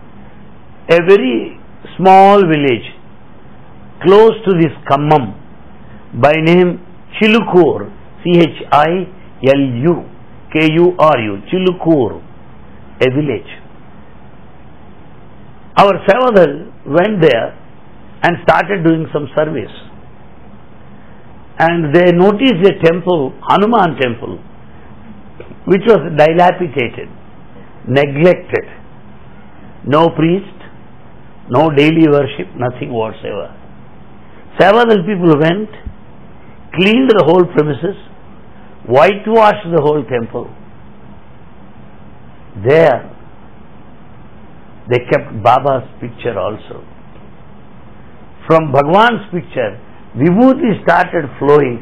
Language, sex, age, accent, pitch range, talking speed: English, male, 60-79, Indian, 140-190 Hz, 80 wpm